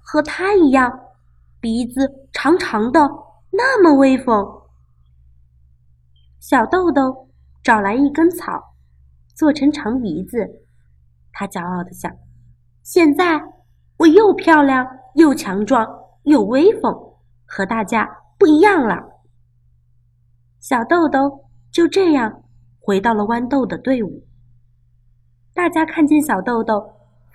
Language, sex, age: Chinese, female, 20-39